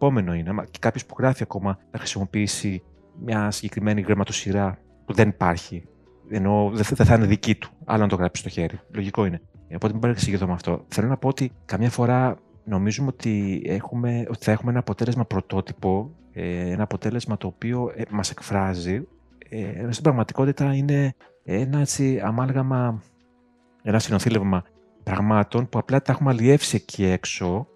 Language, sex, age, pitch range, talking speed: Greek, male, 30-49, 95-120 Hz, 155 wpm